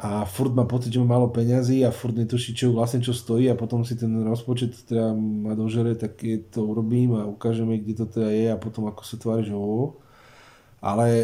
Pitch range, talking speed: 115-130 Hz, 205 wpm